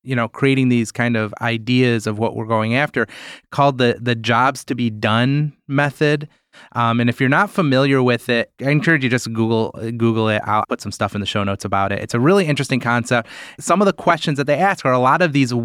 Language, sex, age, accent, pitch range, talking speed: English, male, 30-49, American, 115-140 Hz, 240 wpm